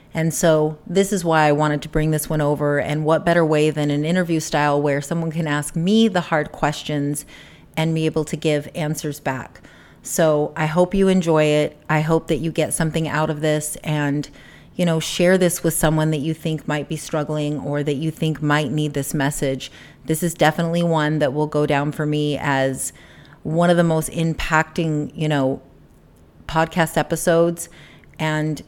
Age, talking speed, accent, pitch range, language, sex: 30-49, 195 wpm, American, 150-165 Hz, English, female